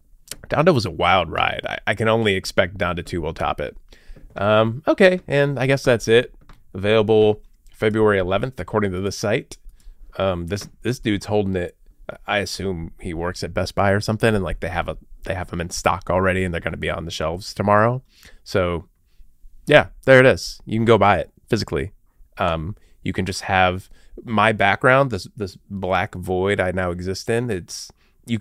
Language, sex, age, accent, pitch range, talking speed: English, male, 20-39, American, 90-110 Hz, 195 wpm